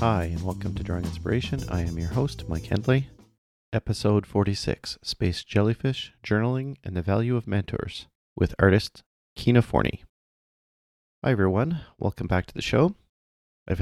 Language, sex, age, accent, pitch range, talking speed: English, male, 40-59, American, 85-110 Hz, 150 wpm